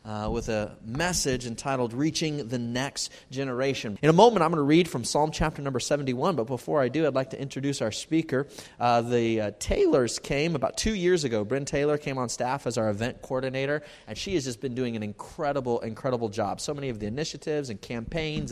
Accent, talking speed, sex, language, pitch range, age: American, 215 wpm, male, English, 115-140 Hz, 30-49